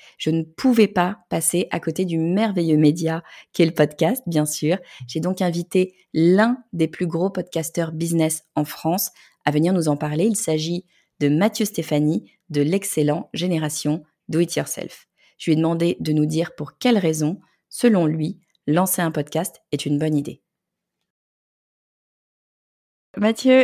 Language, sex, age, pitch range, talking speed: French, female, 30-49, 155-205 Hz, 155 wpm